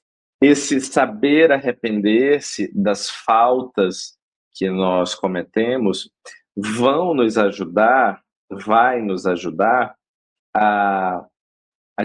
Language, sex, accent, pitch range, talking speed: Portuguese, male, Brazilian, 100-140 Hz, 80 wpm